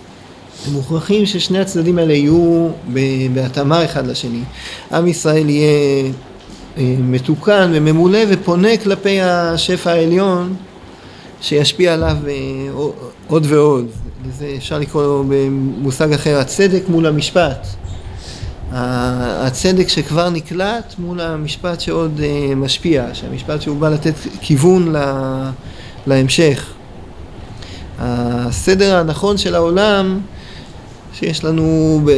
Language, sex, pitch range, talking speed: Hebrew, male, 135-175 Hz, 95 wpm